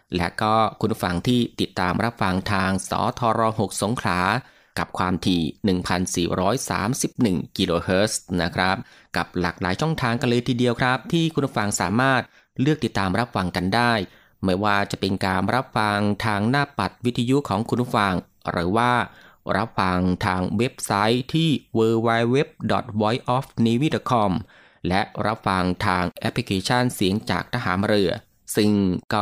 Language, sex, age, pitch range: Thai, male, 20-39, 95-120 Hz